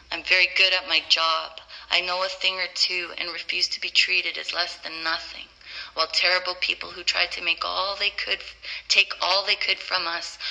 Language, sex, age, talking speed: English, female, 30-49, 210 wpm